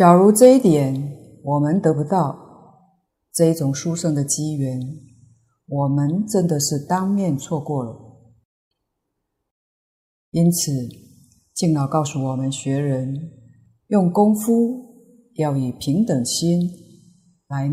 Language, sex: Chinese, female